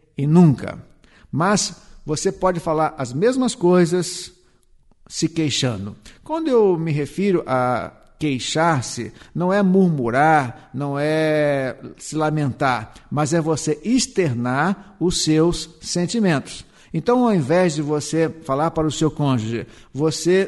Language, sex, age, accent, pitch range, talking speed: Portuguese, male, 50-69, Brazilian, 140-185 Hz, 125 wpm